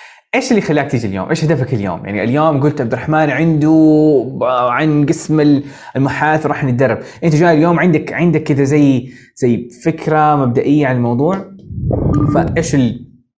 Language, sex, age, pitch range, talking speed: Arabic, male, 20-39, 120-155 Hz, 145 wpm